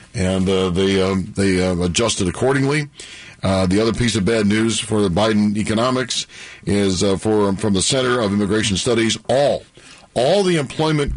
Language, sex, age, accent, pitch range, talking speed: English, male, 50-69, American, 110-165 Hz, 170 wpm